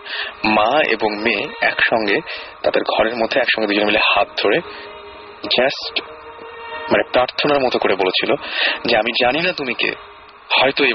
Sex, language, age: male, Bengali, 30-49